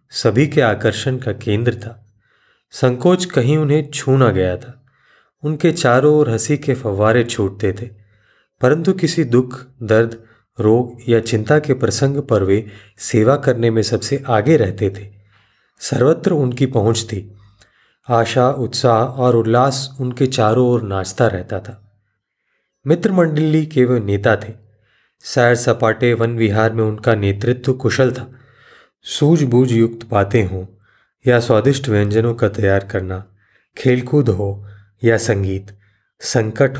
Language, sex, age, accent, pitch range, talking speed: Hindi, male, 30-49, native, 105-130 Hz, 130 wpm